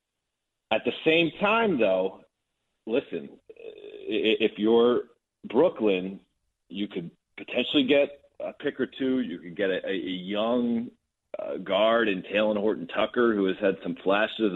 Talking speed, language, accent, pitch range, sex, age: 135 wpm, English, American, 105-125 Hz, male, 40-59